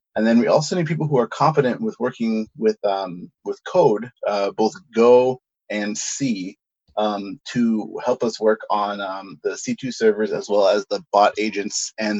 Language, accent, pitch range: English, American, 105-120 Hz